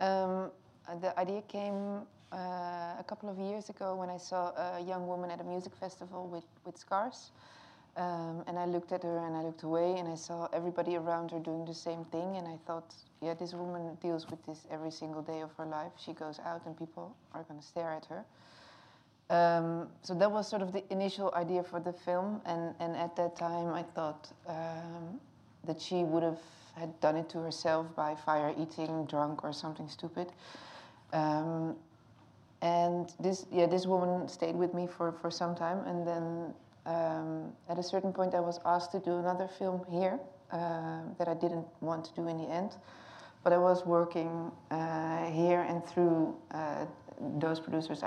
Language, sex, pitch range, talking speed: English, female, 160-180 Hz, 190 wpm